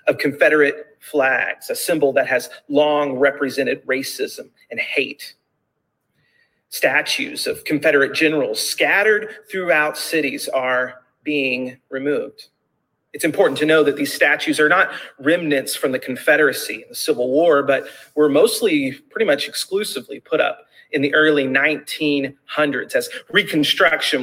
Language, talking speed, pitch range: English, 130 wpm, 140-215 Hz